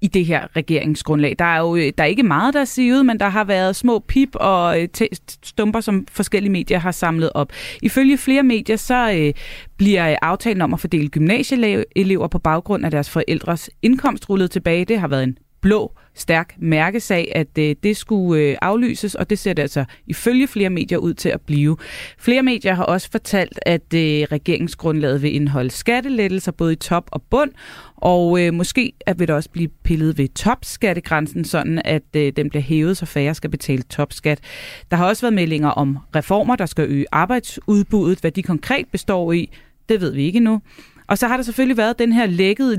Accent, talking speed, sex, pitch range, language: native, 195 wpm, female, 155-210 Hz, Danish